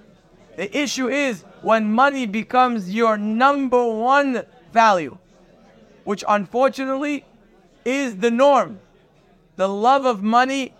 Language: English